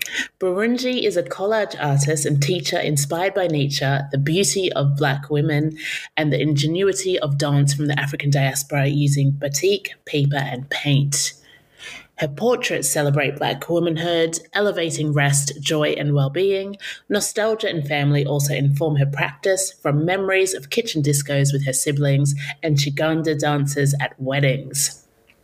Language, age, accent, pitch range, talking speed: English, 30-49, British, 140-170 Hz, 140 wpm